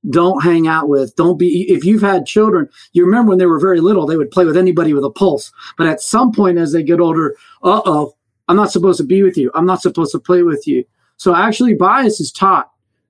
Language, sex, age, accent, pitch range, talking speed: English, male, 40-59, American, 170-215 Hz, 245 wpm